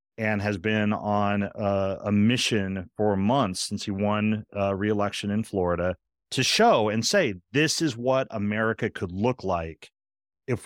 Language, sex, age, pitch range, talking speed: English, male, 40-59, 105-135 Hz, 160 wpm